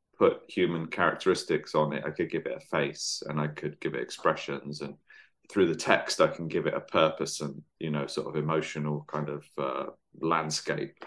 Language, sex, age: Chinese, male, 30-49